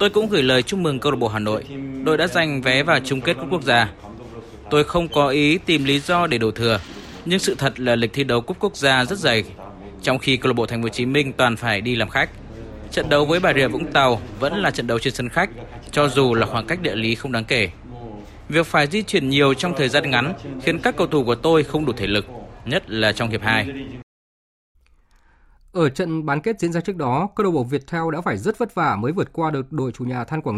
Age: 20-39